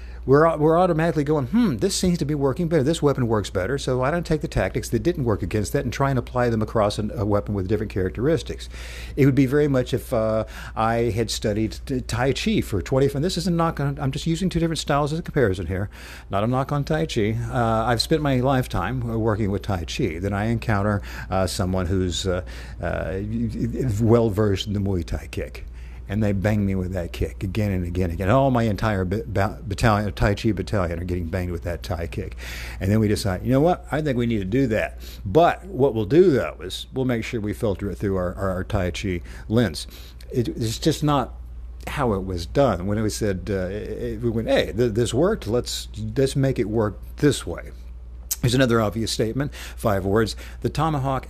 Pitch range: 95-130 Hz